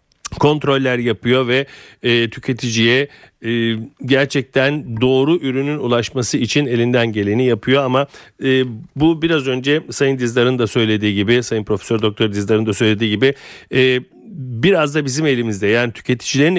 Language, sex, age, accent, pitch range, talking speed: Turkish, male, 40-59, native, 115-140 Hz, 140 wpm